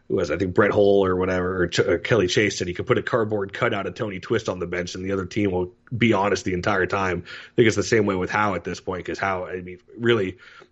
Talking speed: 285 wpm